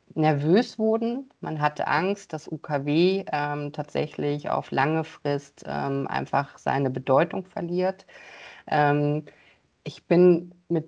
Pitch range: 135-155 Hz